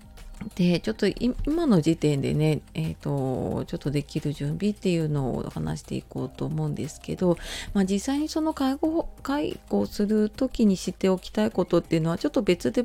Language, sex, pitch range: Japanese, female, 150-205 Hz